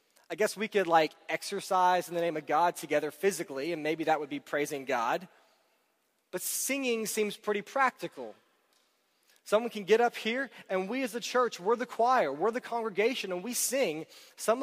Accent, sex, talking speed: American, male, 185 wpm